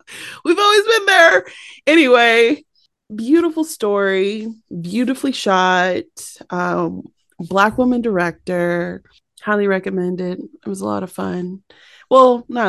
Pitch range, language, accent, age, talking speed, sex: 170-230 Hz, English, American, 30-49, 115 wpm, female